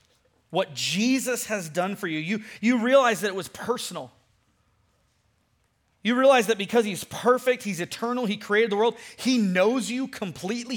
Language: English